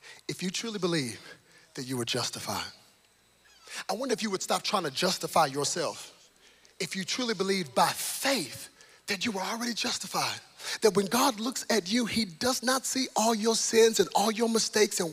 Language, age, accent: English, 30-49, American